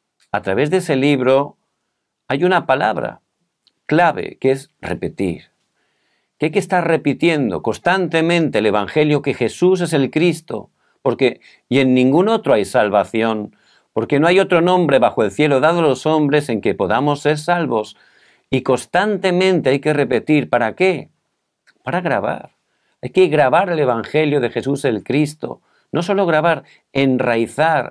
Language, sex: Korean, male